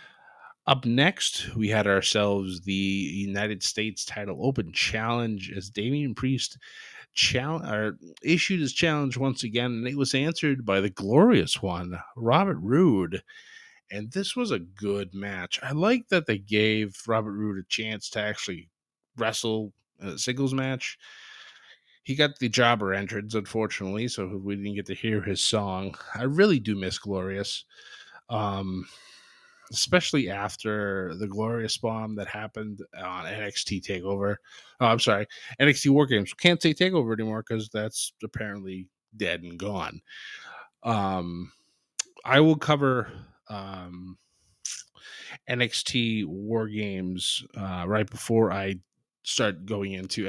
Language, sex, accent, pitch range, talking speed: English, male, American, 95-130 Hz, 130 wpm